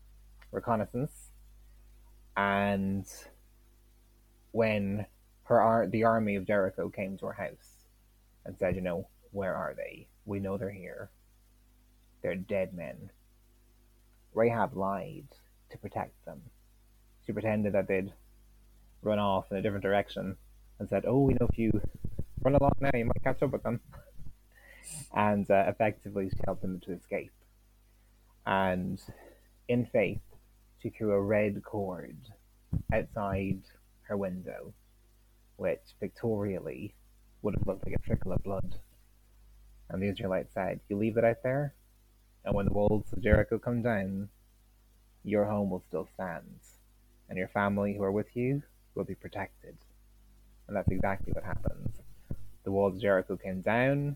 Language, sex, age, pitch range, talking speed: English, male, 20-39, 100-115 Hz, 145 wpm